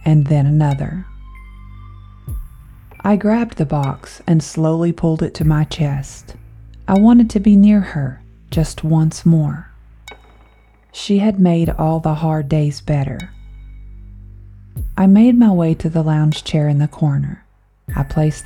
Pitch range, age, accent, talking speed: 135-175 Hz, 40-59, American, 145 wpm